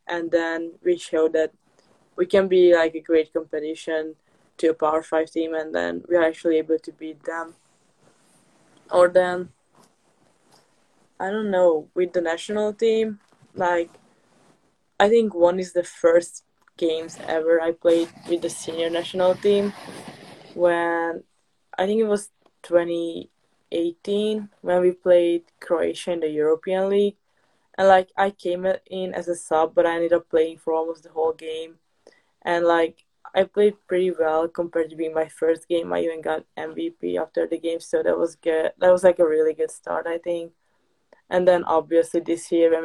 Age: 20-39